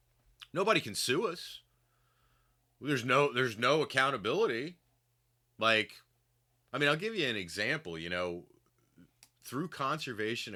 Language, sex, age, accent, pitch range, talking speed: English, male, 30-49, American, 115-130 Hz, 120 wpm